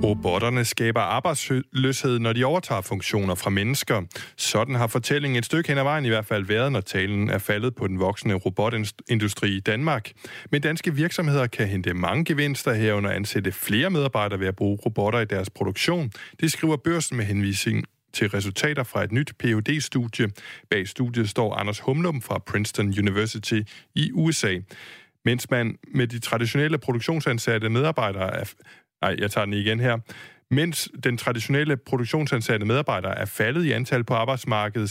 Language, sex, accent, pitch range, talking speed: Danish, male, native, 100-135 Hz, 165 wpm